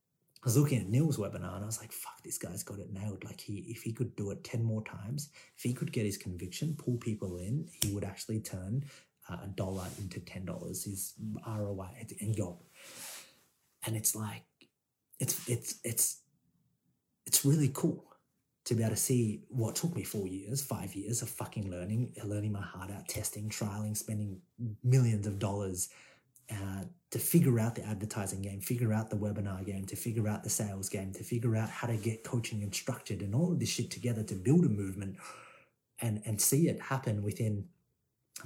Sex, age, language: male, 30-49, English